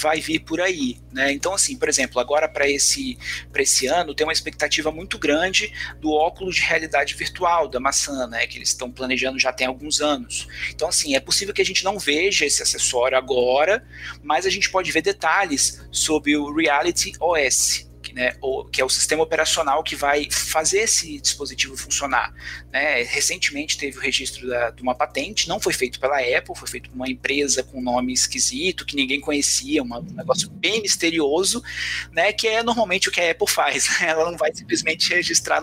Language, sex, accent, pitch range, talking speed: Portuguese, male, Brazilian, 130-170 Hz, 195 wpm